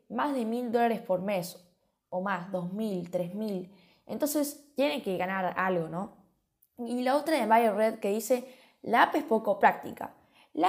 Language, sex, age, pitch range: Spanish, female, 10-29, 200-245 Hz